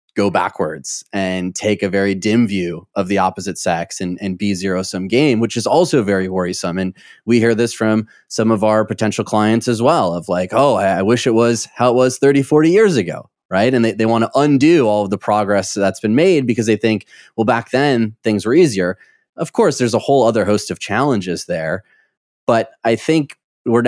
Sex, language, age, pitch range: male, English, 20-39, 100-115 Hz